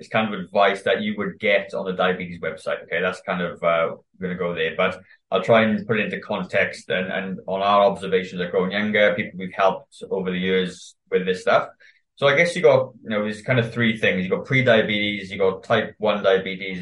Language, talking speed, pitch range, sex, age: English, 235 wpm, 95-120 Hz, male, 20-39